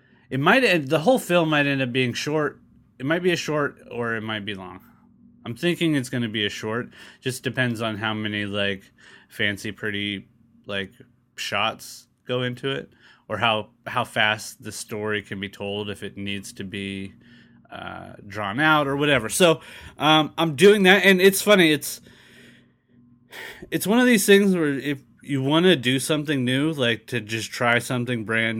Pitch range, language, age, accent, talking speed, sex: 110-145 Hz, English, 30-49, American, 185 wpm, male